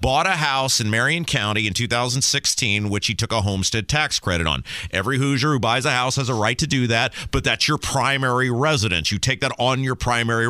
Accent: American